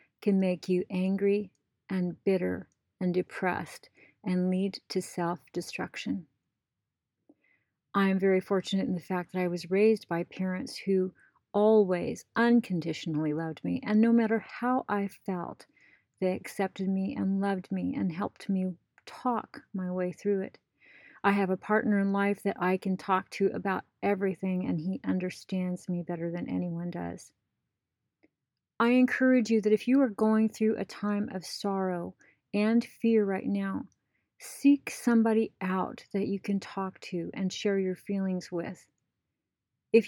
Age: 40-59